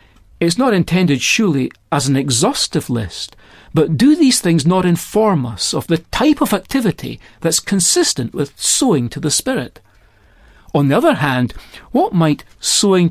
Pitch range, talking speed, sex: 130-200 Hz, 155 wpm, male